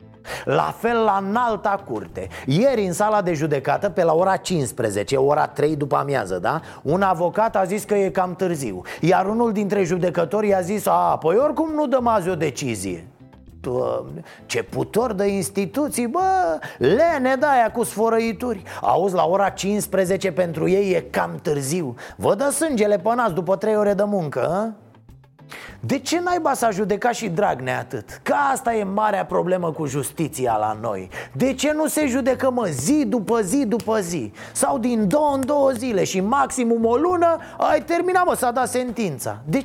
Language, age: Romanian, 30-49